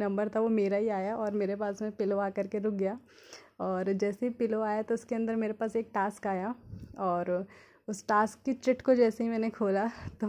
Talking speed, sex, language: 225 wpm, female, Hindi